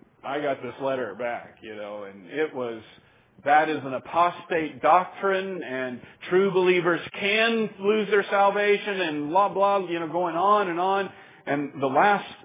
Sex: male